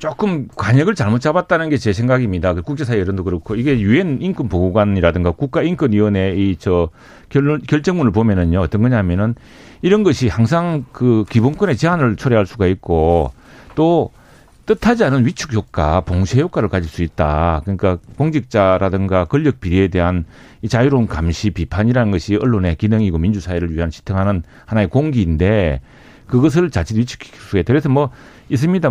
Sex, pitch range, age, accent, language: male, 100-145 Hz, 40-59, native, Korean